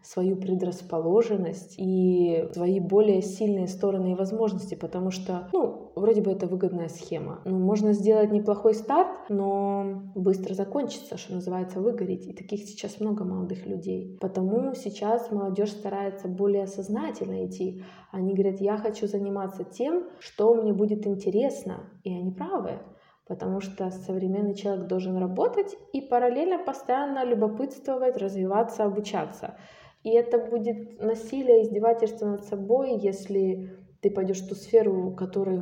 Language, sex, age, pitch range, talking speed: Ukrainian, female, 20-39, 190-225 Hz, 140 wpm